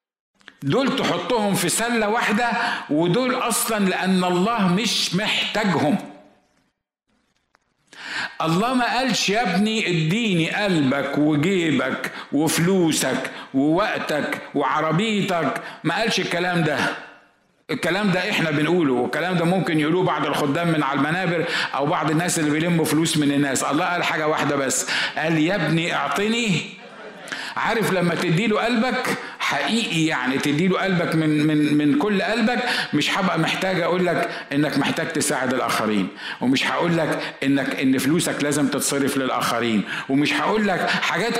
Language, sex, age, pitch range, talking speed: Arabic, male, 50-69, 155-210 Hz, 130 wpm